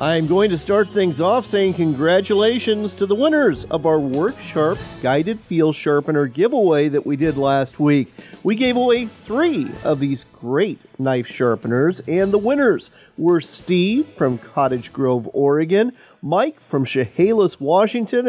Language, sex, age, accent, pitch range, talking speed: English, male, 40-59, American, 140-215 Hz, 150 wpm